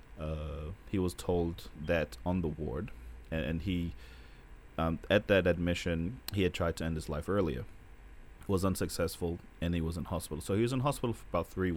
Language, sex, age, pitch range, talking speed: English, male, 30-49, 80-95 Hz, 190 wpm